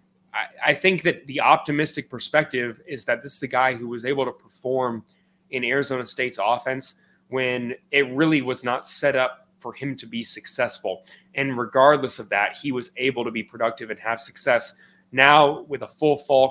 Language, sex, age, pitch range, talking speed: English, male, 20-39, 125-150 Hz, 185 wpm